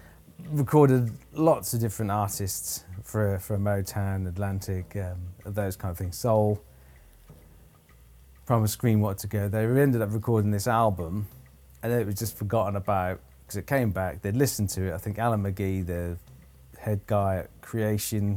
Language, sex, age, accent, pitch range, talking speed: English, male, 30-49, British, 95-115 Hz, 160 wpm